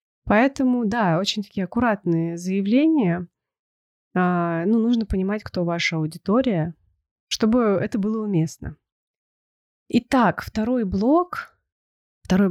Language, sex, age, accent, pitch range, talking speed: Russian, female, 20-39, native, 175-220 Hz, 95 wpm